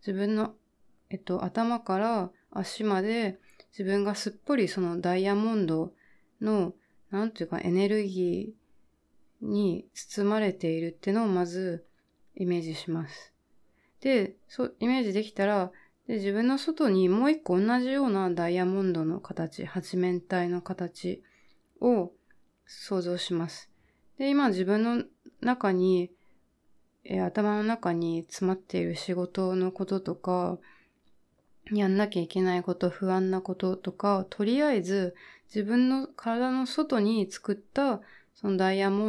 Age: 20-39